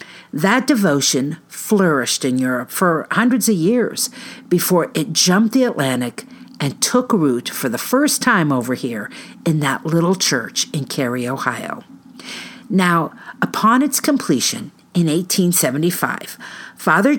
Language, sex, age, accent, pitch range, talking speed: English, female, 50-69, American, 155-230 Hz, 130 wpm